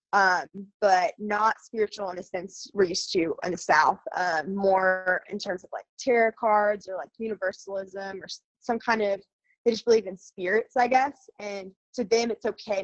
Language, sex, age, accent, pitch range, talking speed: English, female, 20-39, American, 180-225 Hz, 185 wpm